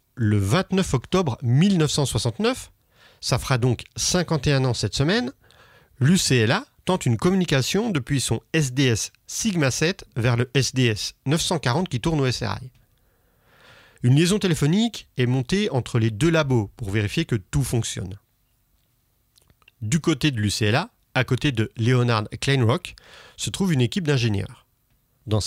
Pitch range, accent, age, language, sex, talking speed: 115-155 Hz, French, 40-59, French, male, 130 wpm